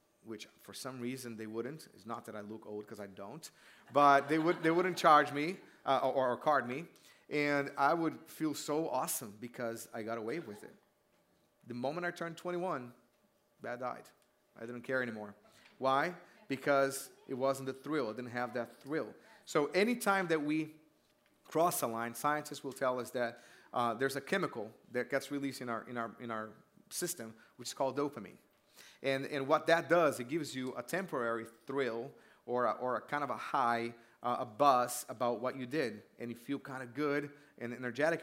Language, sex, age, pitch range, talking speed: English, male, 30-49, 120-150 Hz, 195 wpm